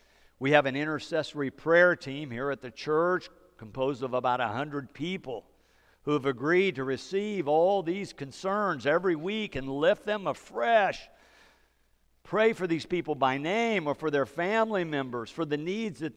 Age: 50-69